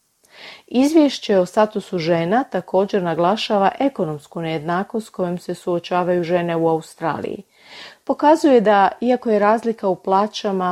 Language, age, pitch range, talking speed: Croatian, 40-59, 180-225 Hz, 125 wpm